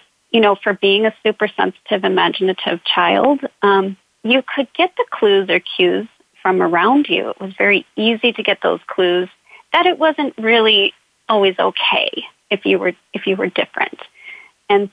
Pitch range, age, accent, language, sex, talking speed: 190-230 Hz, 40-59, American, English, female, 170 wpm